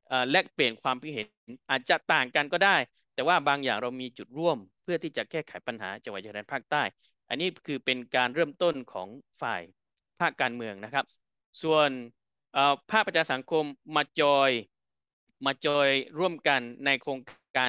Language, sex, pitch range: Thai, male, 125-155 Hz